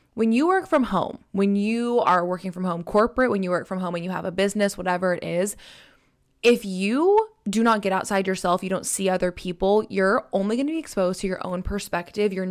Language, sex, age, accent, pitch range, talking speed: English, female, 20-39, American, 180-220 Hz, 230 wpm